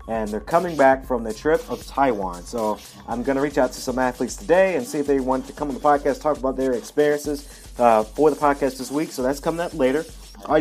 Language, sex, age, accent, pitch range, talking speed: English, male, 30-49, American, 120-155 Hz, 255 wpm